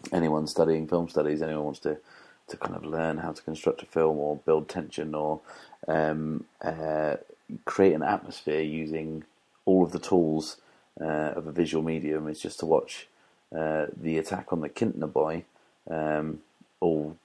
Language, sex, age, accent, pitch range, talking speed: English, male, 30-49, British, 75-80 Hz, 165 wpm